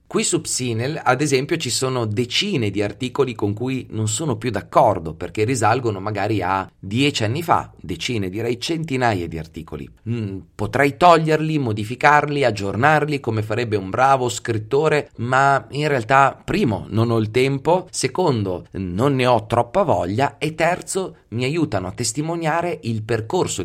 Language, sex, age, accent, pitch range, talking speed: Italian, male, 30-49, native, 100-135 Hz, 150 wpm